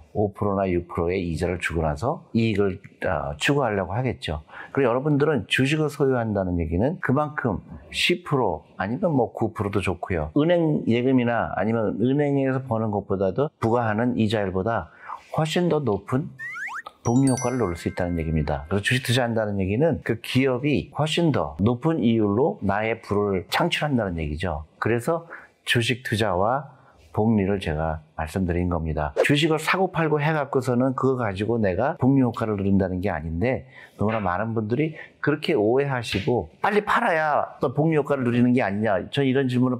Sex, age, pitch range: male, 40-59, 95-130 Hz